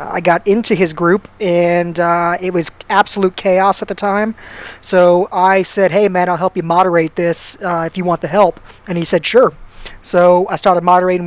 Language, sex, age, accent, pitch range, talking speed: English, male, 20-39, American, 170-195 Hz, 200 wpm